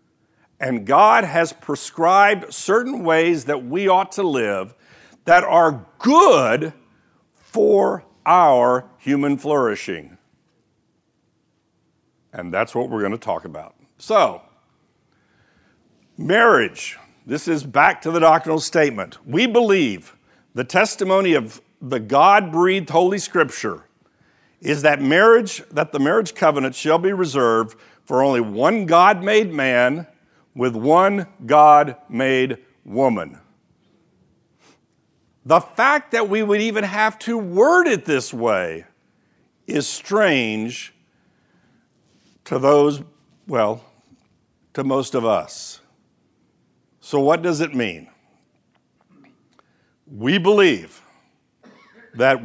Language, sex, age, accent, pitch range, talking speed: English, male, 60-79, American, 135-205 Hz, 105 wpm